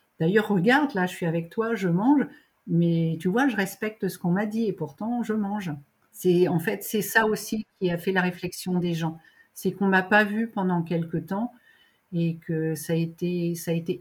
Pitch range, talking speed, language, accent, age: 170-215 Hz, 225 wpm, French, French, 50-69